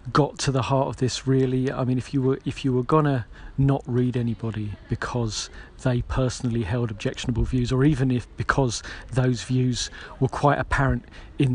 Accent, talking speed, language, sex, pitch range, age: British, 180 wpm, English, male, 120-140 Hz, 40-59